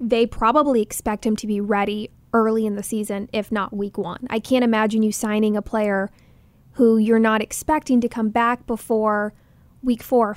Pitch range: 210-240 Hz